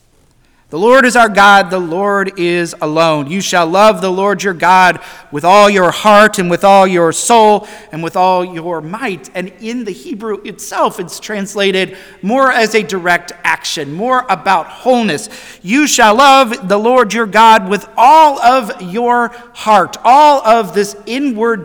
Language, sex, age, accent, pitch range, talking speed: English, male, 40-59, American, 175-235 Hz, 170 wpm